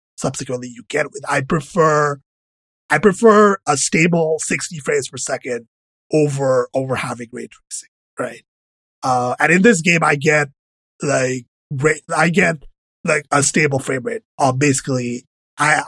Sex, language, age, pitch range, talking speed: male, English, 30-49, 130-160 Hz, 145 wpm